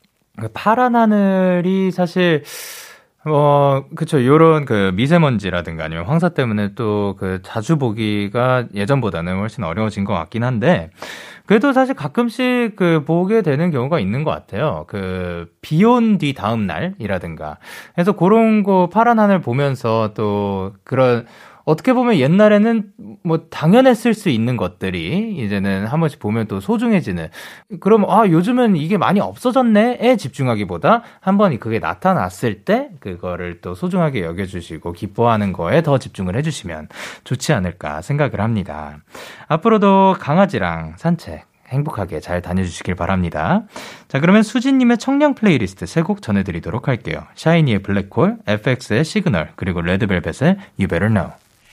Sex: male